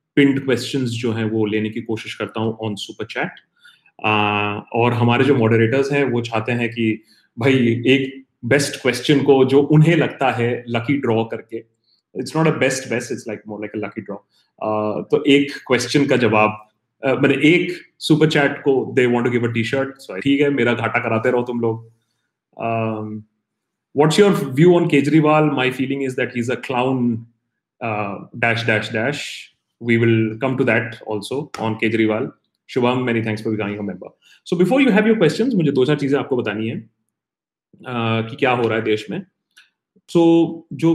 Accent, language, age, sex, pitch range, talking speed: native, Hindi, 30-49, male, 110-140 Hz, 140 wpm